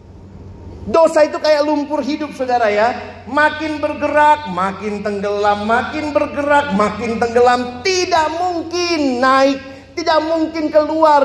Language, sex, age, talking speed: Indonesian, male, 40-59, 110 wpm